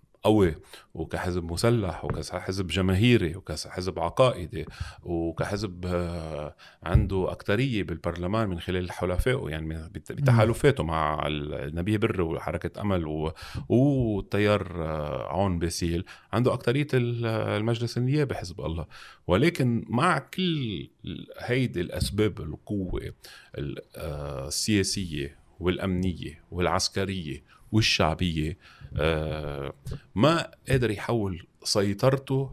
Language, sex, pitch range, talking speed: Arabic, male, 85-120 Hz, 80 wpm